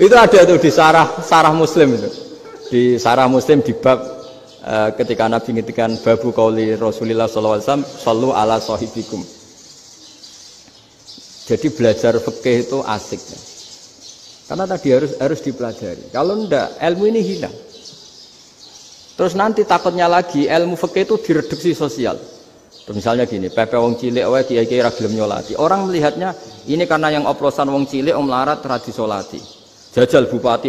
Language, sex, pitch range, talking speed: Indonesian, male, 120-185 Hz, 140 wpm